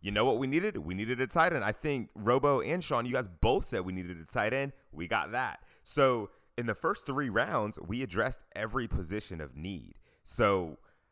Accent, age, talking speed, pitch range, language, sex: American, 30-49, 215 wpm, 100-150 Hz, English, male